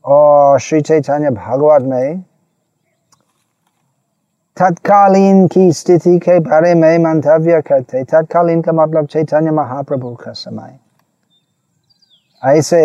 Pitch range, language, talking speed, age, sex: 140-175 Hz, Hindi, 90 wpm, 30-49, male